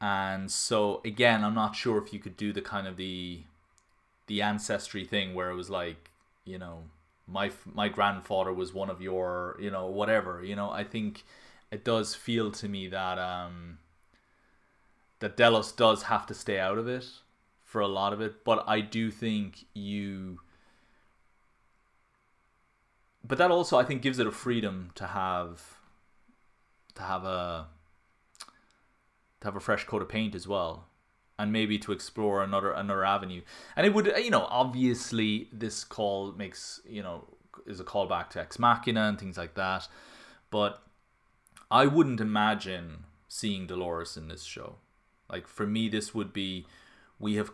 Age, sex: 20-39, male